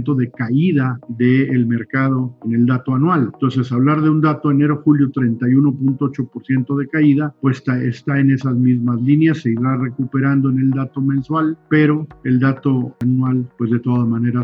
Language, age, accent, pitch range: Spanish, 50-69, Mexican, 125-155 Hz